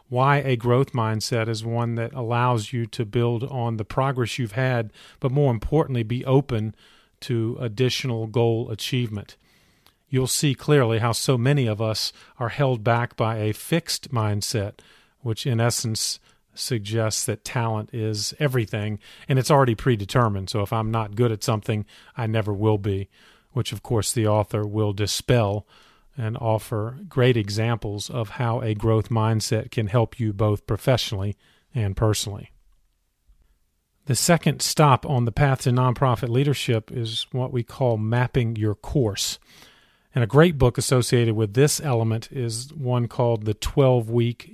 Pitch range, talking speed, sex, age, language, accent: 110-130 Hz, 155 wpm, male, 40-59, English, American